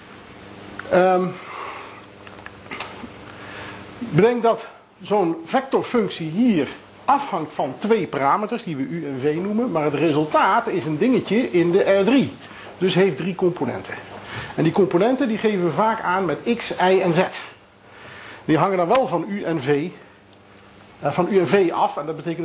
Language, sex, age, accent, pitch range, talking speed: Dutch, male, 50-69, Dutch, 130-190 Hz, 145 wpm